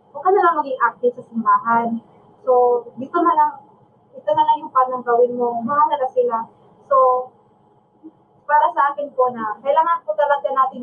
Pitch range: 240-280 Hz